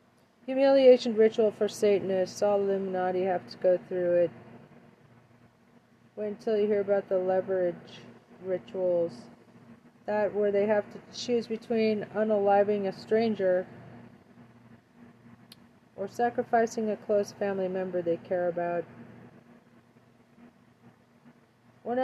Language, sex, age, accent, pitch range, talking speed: English, female, 40-59, American, 180-210 Hz, 105 wpm